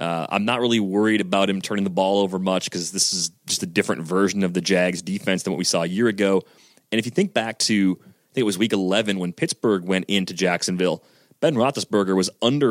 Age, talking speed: 30-49, 240 wpm